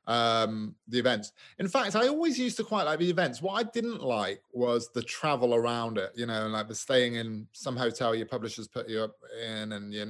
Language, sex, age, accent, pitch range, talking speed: English, male, 30-49, British, 115-145 Hz, 225 wpm